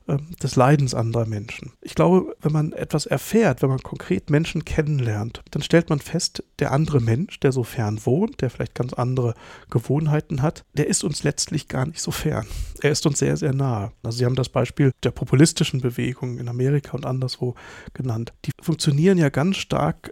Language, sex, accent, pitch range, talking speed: German, male, German, 125-160 Hz, 190 wpm